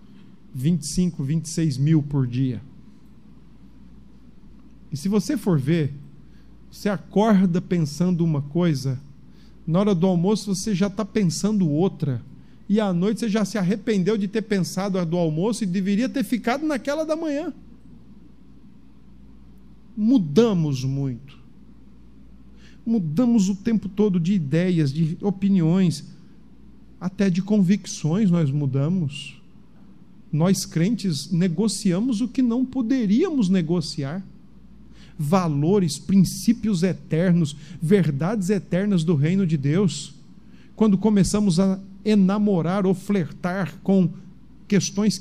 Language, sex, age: Portuguese, male, 50-69